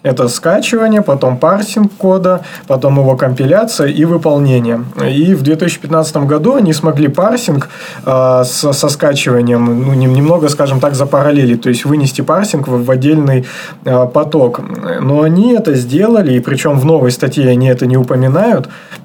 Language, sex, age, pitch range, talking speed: Russian, male, 20-39, 130-160 Hz, 140 wpm